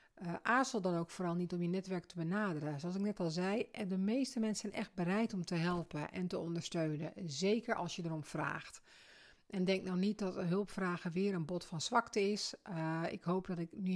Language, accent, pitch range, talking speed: Dutch, Dutch, 160-195 Hz, 220 wpm